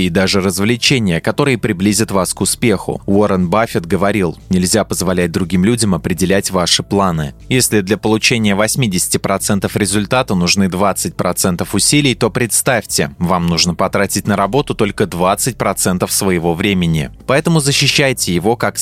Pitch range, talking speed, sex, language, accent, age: 95-125 Hz, 130 wpm, male, Russian, native, 20-39